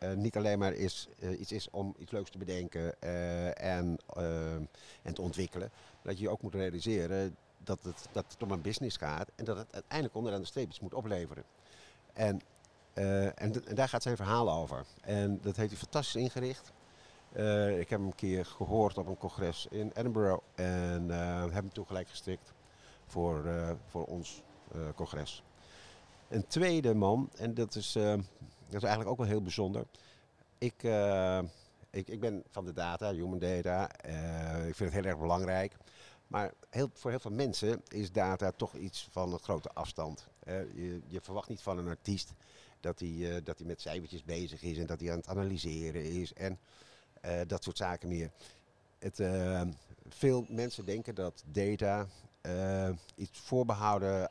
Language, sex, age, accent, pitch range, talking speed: Dutch, male, 50-69, Dutch, 85-105 Hz, 180 wpm